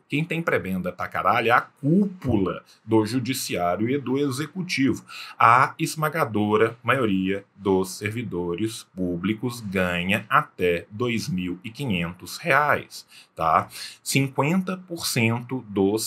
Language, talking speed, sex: Portuguese, 95 wpm, male